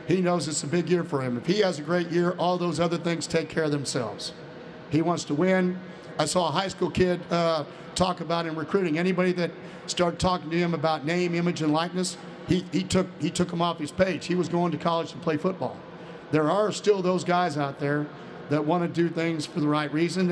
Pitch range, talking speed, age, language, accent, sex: 155-175 Hz, 240 wpm, 50-69, English, American, male